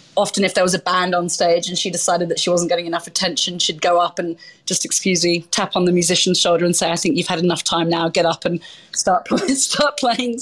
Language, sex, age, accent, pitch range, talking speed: English, female, 30-49, British, 170-195 Hz, 255 wpm